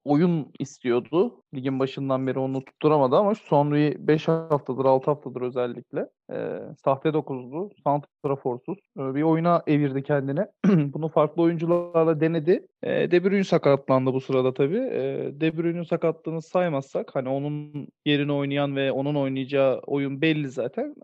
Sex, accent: male, native